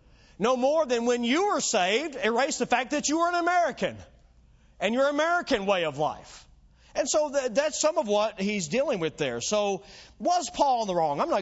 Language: English